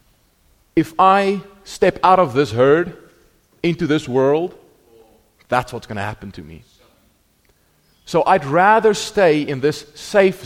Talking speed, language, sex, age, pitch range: 140 wpm, English, male, 30-49, 115-170 Hz